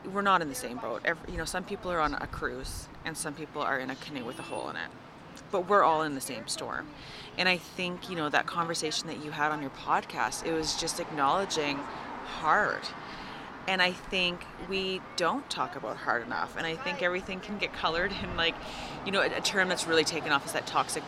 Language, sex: English, female